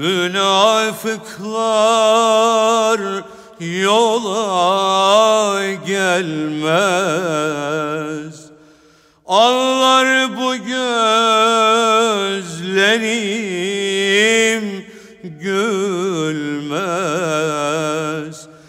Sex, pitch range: male, 155-210 Hz